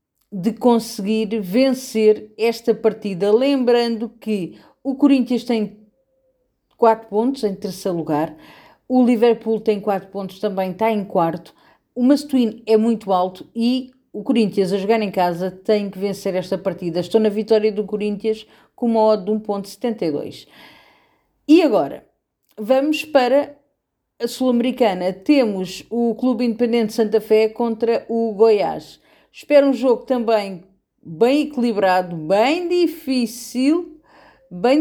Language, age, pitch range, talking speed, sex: Portuguese, 40-59, 210-250 Hz, 130 wpm, female